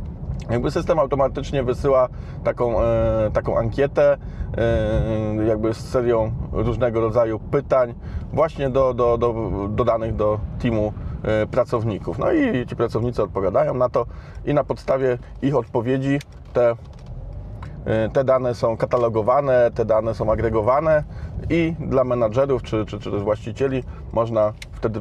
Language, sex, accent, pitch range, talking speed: Polish, male, native, 105-120 Hz, 135 wpm